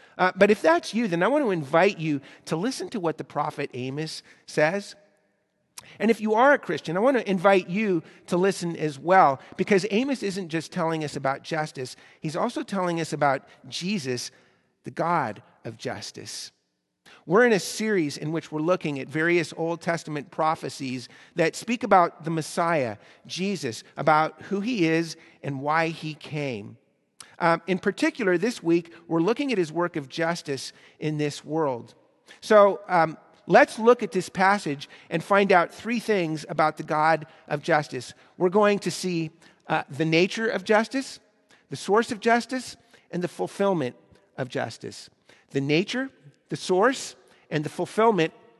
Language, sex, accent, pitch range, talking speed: English, male, American, 155-205 Hz, 170 wpm